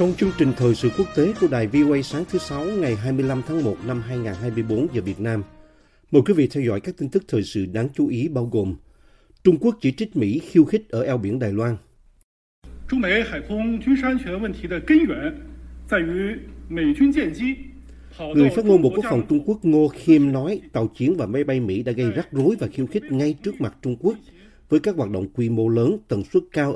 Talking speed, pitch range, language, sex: 195 wpm, 110-160 Hz, Vietnamese, male